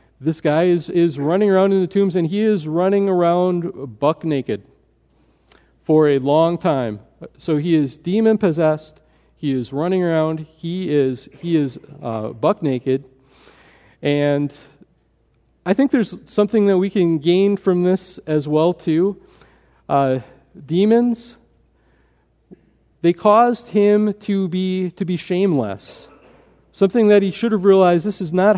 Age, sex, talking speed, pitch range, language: 40-59, male, 145 wpm, 150-190 Hz, English